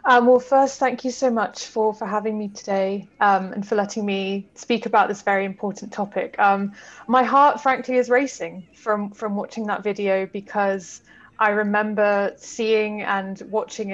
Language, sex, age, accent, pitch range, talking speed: English, female, 20-39, British, 195-230 Hz, 170 wpm